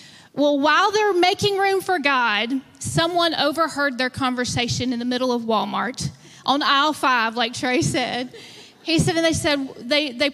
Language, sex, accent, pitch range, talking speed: English, female, American, 255-315 Hz, 170 wpm